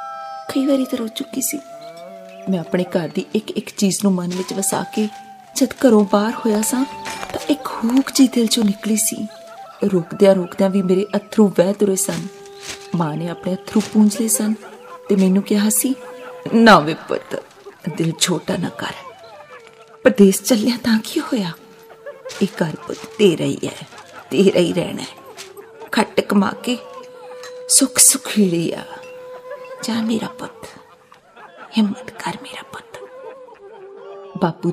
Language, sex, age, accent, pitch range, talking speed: Hindi, female, 30-49, native, 190-260 Hz, 110 wpm